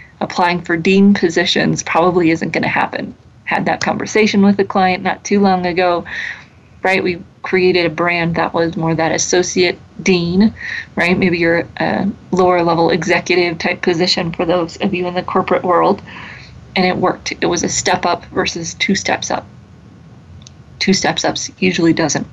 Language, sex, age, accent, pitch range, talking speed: English, female, 30-49, American, 160-190 Hz, 170 wpm